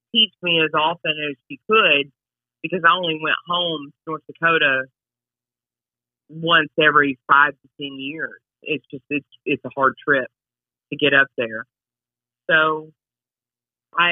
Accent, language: American, English